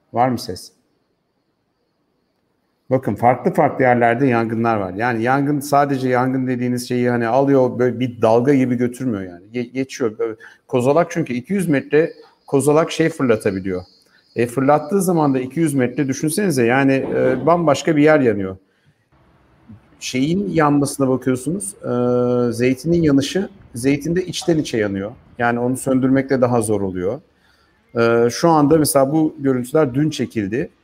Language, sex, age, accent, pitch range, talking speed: Turkish, male, 50-69, native, 110-140 Hz, 135 wpm